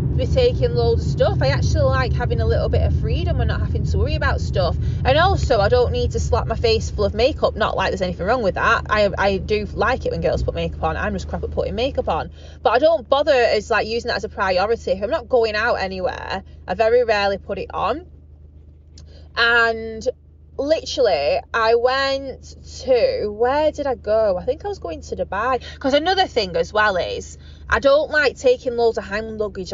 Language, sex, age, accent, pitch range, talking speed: English, female, 20-39, British, 195-330 Hz, 220 wpm